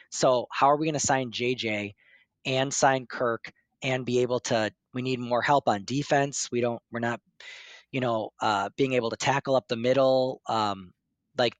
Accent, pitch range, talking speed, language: American, 115-140 Hz, 190 wpm, English